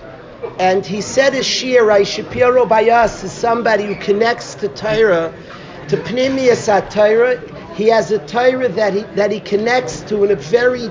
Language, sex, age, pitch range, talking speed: English, male, 50-69, 200-250 Hz, 170 wpm